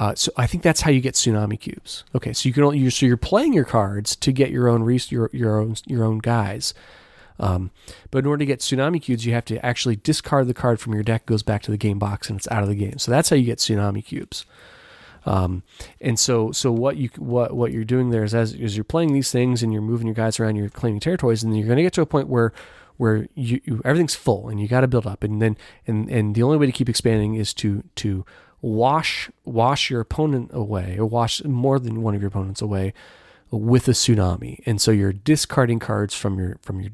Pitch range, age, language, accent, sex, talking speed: 105-130 Hz, 30-49, English, American, male, 250 wpm